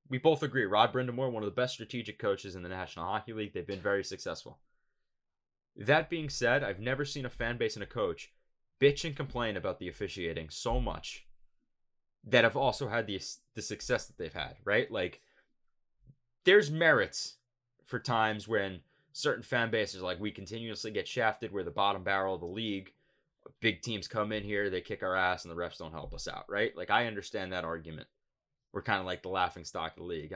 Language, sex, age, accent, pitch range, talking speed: English, male, 20-39, American, 95-135 Hz, 205 wpm